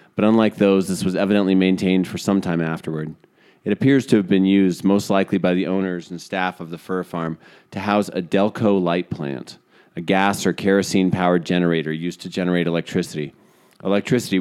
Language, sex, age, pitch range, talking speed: English, male, 30-49, 85-100 Hz, 185 wpm